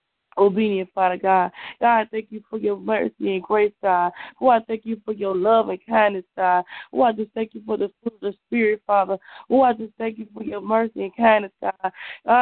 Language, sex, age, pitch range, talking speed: English, female, 20-39, 195-235 Hz, 235 wpm